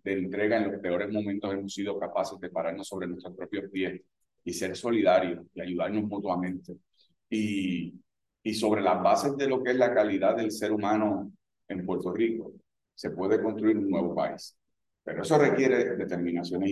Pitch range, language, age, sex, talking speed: 95-125 Hz, Spanish, 40-59, male, 170 wpm